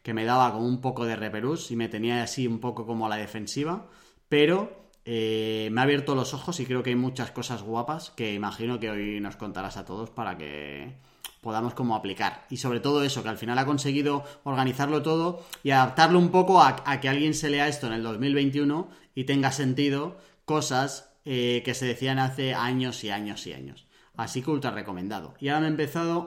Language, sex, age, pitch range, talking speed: Spanish, male, 30-49, 115-145 Hz, 210 wpm